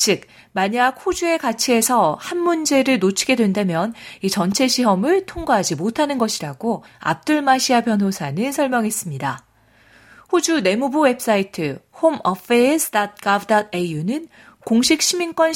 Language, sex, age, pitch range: Korean, female, 40-59, 190-280 Hz